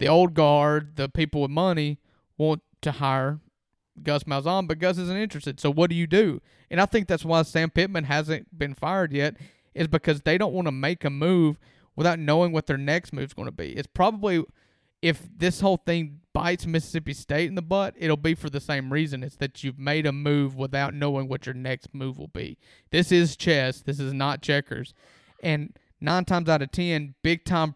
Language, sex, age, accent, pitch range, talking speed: English, male, 30-49, American, 145-170 Hz, 210 wpm